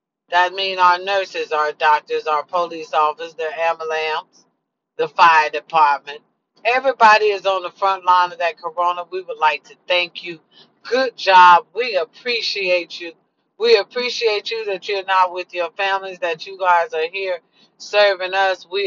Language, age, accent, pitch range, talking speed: English, 40-59, American, 185-275 Hz, 160 wpm